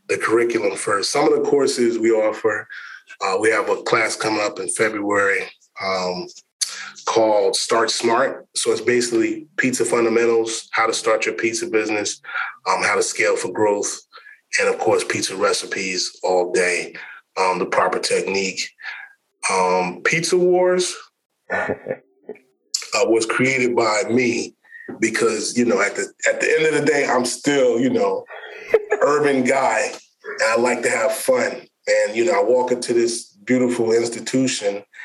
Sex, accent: male, American